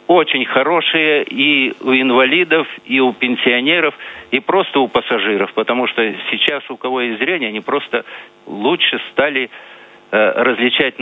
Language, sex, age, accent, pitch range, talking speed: Russian, male, 50-69, native, 110-135 Hz, 130 wpm